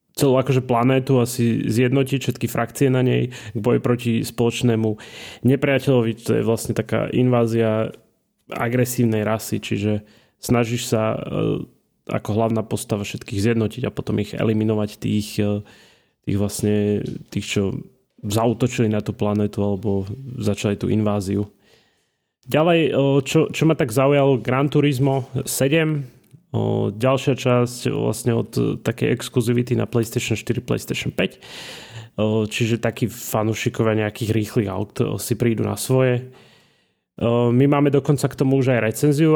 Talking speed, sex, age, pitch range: 130 wpm, male, 30-49, 110-130 Hz